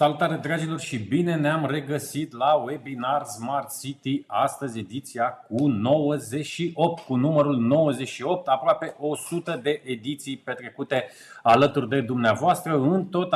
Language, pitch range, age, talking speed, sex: Romanian, 135-160 Hz, 30-49, 120 wpm, male